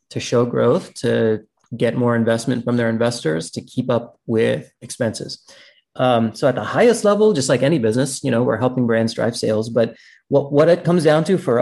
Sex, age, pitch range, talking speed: male, 30-49, 115-135 Hz, 205 wpm